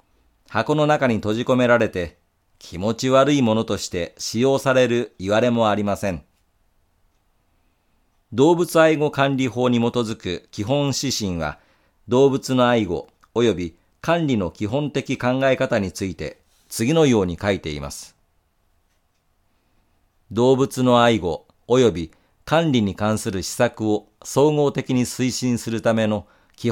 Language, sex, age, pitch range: Japanese, male, 50-69, 90-135 Hz